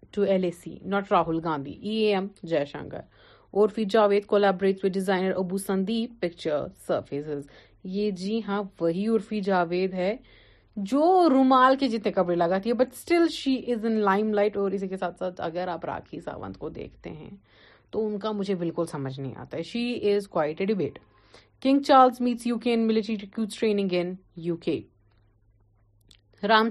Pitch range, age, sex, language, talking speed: 170-215 Hz, 30-49, female, Urdu, 135 wpm